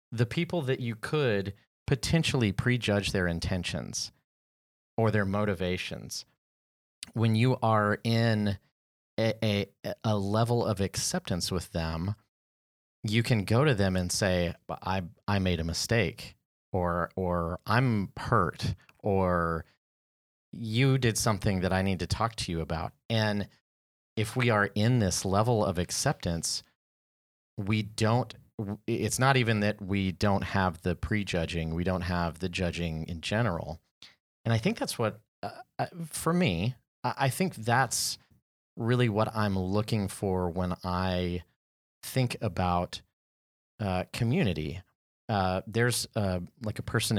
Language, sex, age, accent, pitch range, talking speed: English, male, 30-49, American, 90-115 Hz, 135 wpm